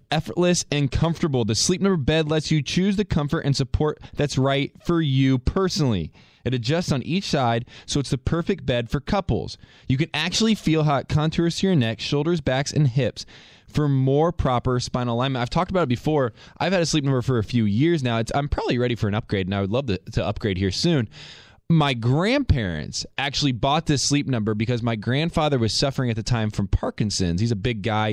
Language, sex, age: English, male, 20-39